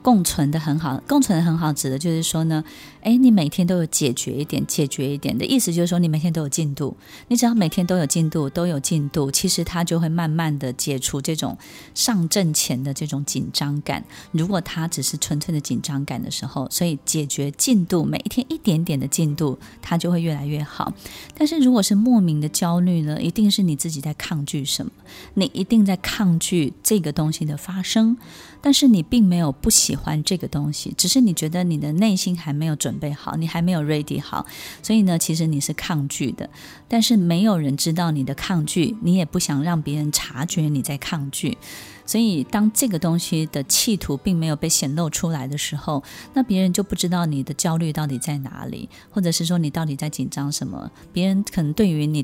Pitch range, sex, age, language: 150-185 Hz, female, 20-39, Chinese